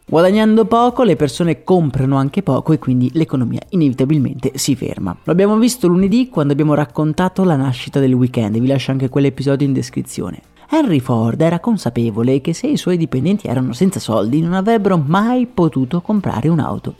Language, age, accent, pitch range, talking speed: Italian, 30-49, native, 135-185 Hz, 170 wpm